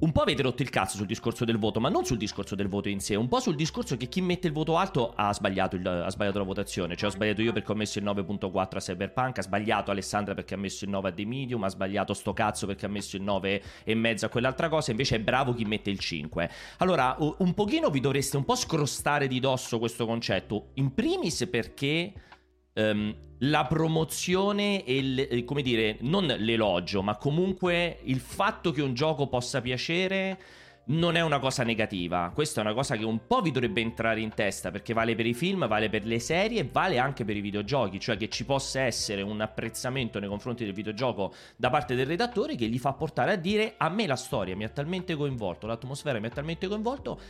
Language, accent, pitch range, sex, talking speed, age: Italian, native, 105-150 Hz, male, 215 wpm, 30-49